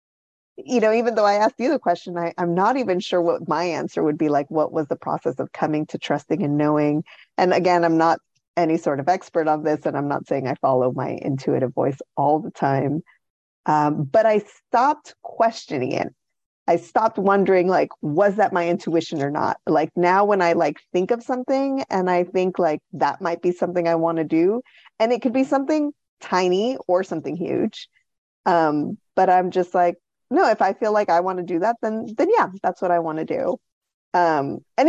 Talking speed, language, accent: 210 wpm, English, American